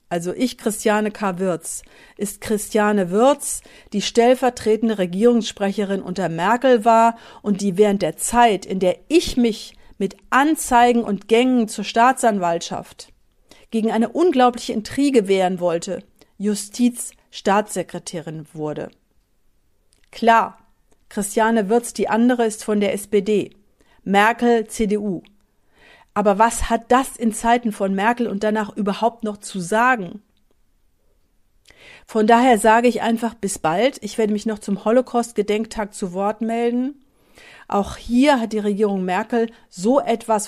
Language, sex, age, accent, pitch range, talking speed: English, female, 50-69, German, 195-235 Hz, 125 wpm